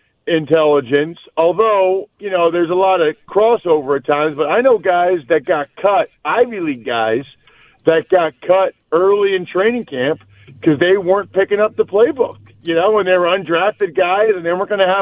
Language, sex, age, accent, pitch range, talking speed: English, male, 50-69, American, 165-200 Hz, 190 wpm